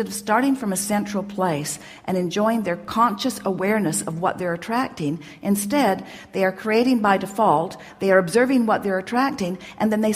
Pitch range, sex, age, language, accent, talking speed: 180-220 Hz, female, 50-69, English, American, 175 wpm